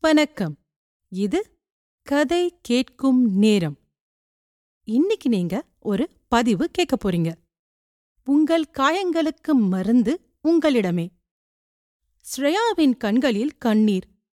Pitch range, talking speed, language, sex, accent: 210-295 Hz, 75 wpm, Tamil, female, native